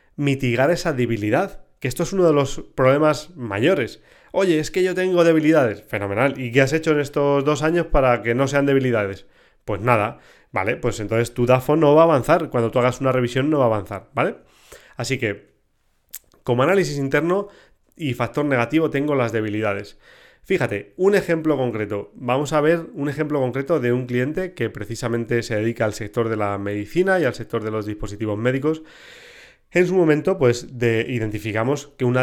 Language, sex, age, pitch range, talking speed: Spanish, male, 30-49, 115-150 Hz, 185 wpm